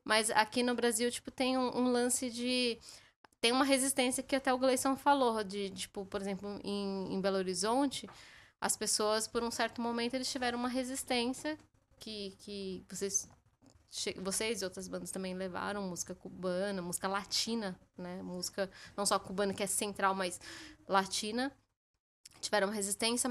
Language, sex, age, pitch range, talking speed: Portuguese, female, 10-29, 195-240 Hz, 155 wpm